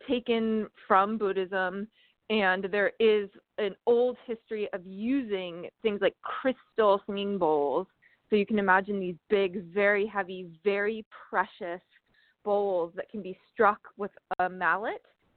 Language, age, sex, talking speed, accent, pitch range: English, 20-39, female, 135 wpm, American, 185-220 Hz